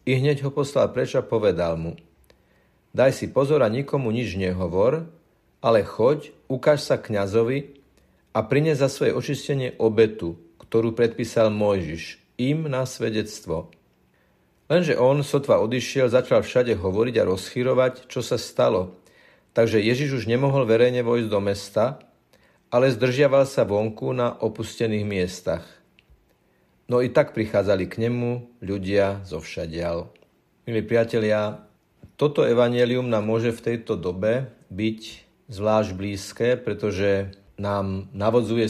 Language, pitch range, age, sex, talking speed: Slovak, 100-120 Hz, 50-69, male, 125 wpm